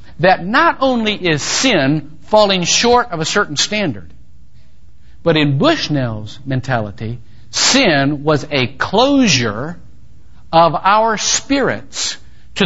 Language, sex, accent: English, male, American